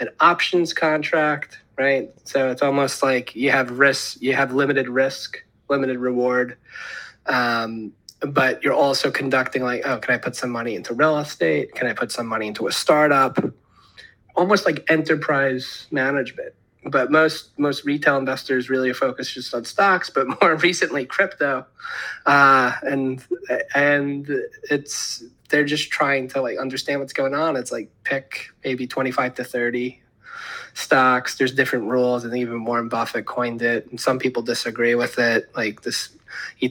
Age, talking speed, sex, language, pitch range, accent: 20-39, 160 wpm, male, English, 125-140 Hz, American